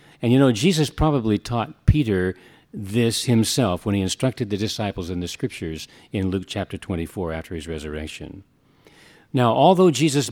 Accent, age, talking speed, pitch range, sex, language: American, 50-69, 155 wpm, 100-140 Hz, male, English